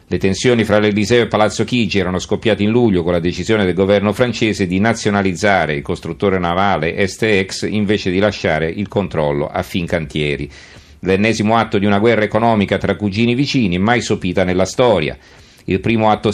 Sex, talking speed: male, 170 wpm